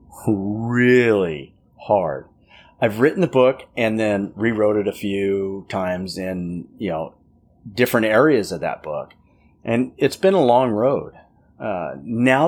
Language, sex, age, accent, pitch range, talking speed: English, male, 30-49, American, 100-130 Hz, 140 wpm